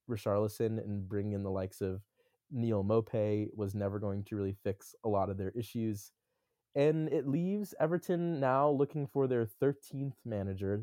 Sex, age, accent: male, 20-39, American